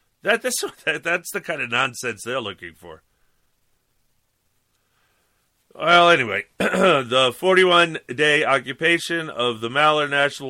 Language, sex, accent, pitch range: English, male, American, 135-200 Hz